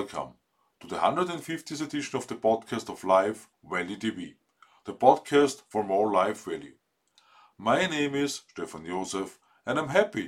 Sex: male